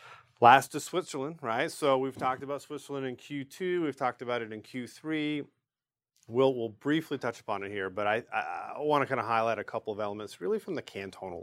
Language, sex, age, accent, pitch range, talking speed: English, male, 40-59, American, 100-135 Hz, 215 wpm